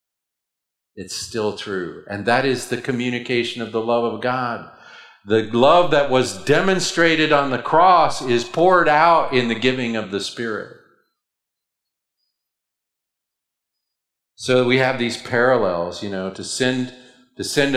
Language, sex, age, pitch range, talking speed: English, male, 50-69, 105-130 Hz, 140 wpm